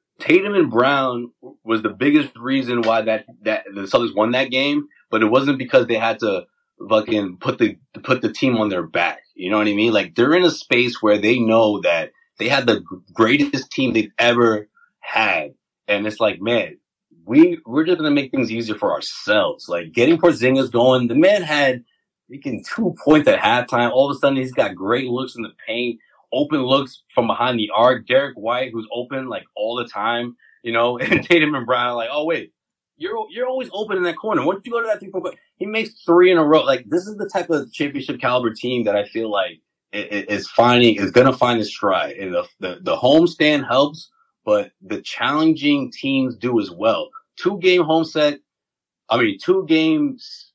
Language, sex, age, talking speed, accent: English, male, 30-49, 210 wpm, American